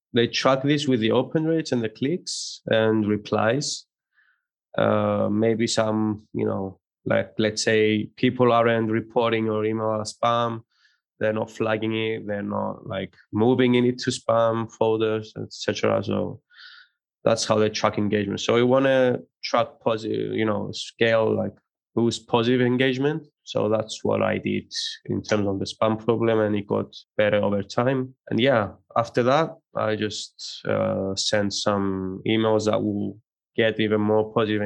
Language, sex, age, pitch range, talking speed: English, male, 20-39, 105-115 Hz, 160 wpm